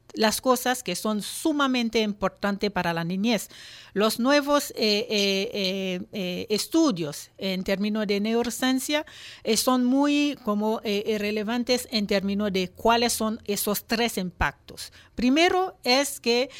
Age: 50-69